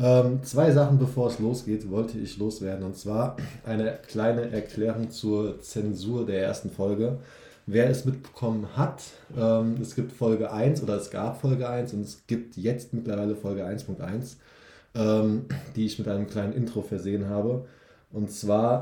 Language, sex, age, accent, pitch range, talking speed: German, male, 20-39, German, 105-120 Hz, 165 wpm